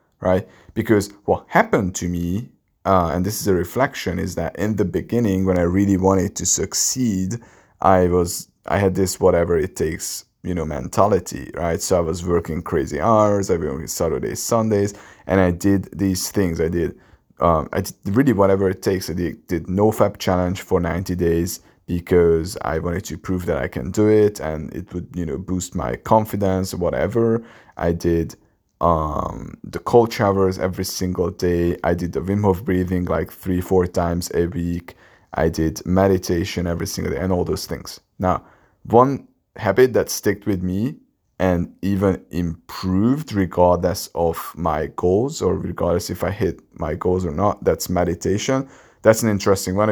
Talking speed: 180 wpm